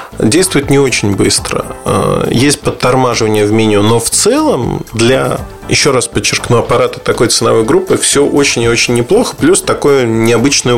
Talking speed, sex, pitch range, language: 150 wpm, male, 115-160 Hz, Russian